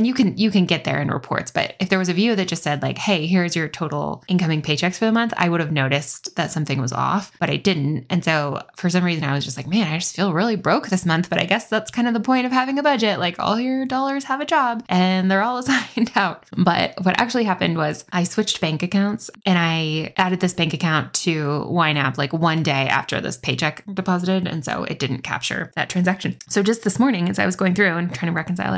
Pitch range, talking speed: 165-215 Hz, 255 wpm